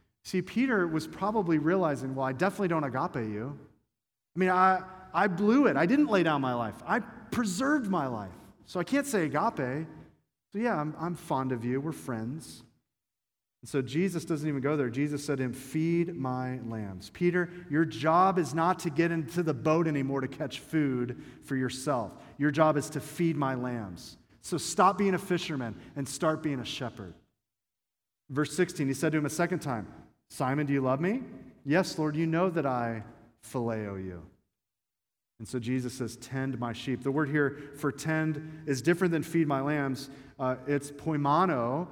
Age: 40-59